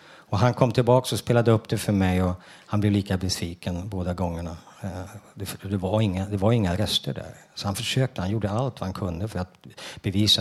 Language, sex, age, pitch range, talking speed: Swedish, male, 50-69, 95-120 Hz, 210 wpm